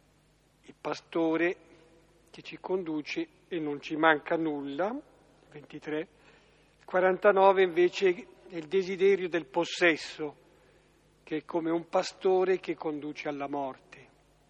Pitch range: 155-185 Hz